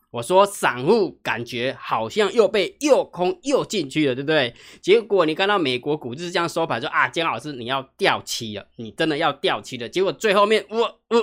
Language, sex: Chinese, male